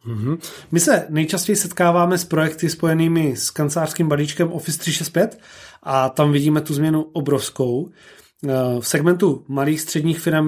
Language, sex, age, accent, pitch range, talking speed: Czech, male, 30-49, native, 140-165 Hz, 135 wpm